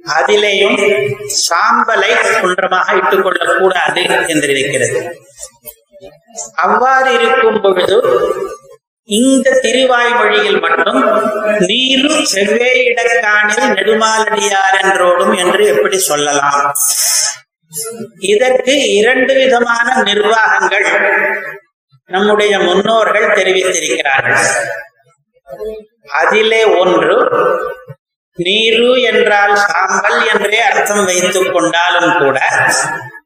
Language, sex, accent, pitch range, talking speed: Tamil, male, native, 185-230 Hz, 65 wpm